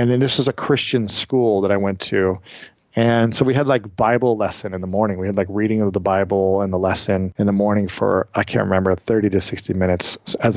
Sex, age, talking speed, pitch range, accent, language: male, 40-59, 245 wpm, 105-130 Hz, American, English